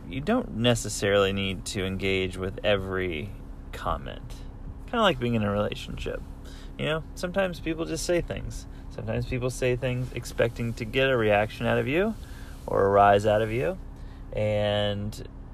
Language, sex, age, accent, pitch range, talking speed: English, male, 30-49, American, 95-125 Hz, 160 wpm